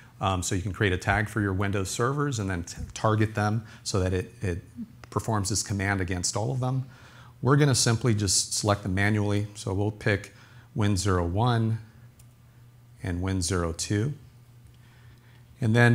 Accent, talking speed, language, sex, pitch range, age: American, 160 wpm, English, male, 95-120 Hz, 40-59